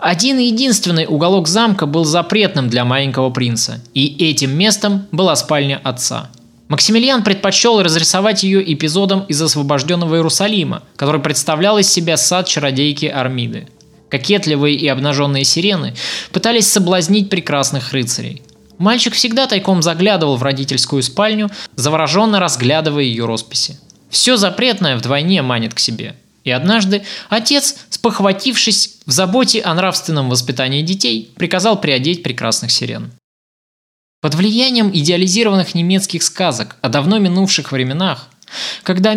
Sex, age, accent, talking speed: male, 20-39, native, 125 wpm